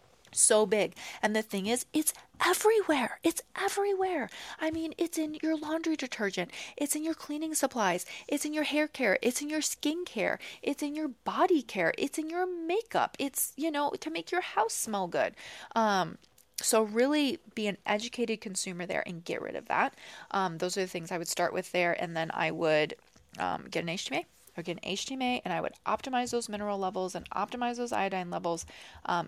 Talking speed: 195 wpm